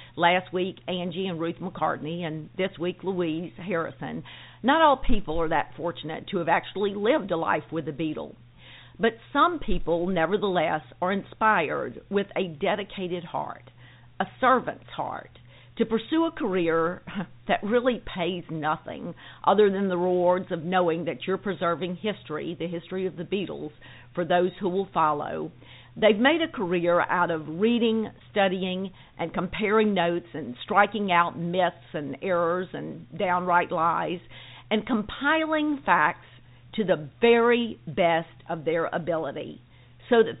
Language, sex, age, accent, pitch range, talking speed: English, female, 50-69, American, 160-200 Hz, 145 wpm